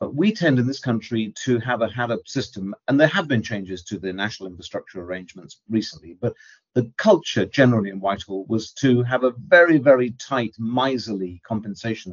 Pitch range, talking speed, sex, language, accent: 95-125 Hz, 185 wpm, male, English, British